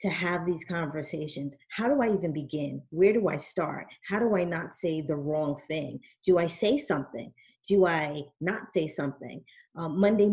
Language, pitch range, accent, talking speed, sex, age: English, 155-195 Hz, American, 185 wpm, female, 30-49